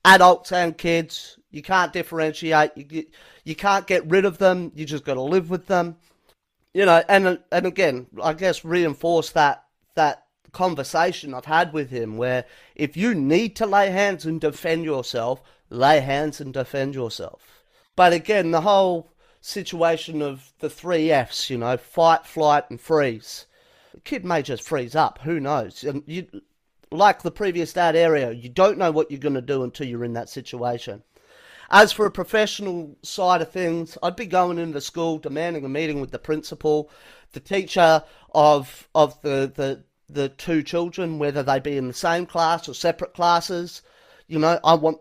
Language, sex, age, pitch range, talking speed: English, male, 30-49, 145-175 Hz, 180 wpm